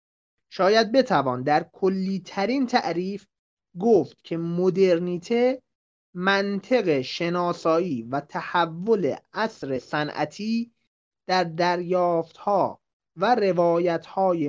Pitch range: 165-225 Hz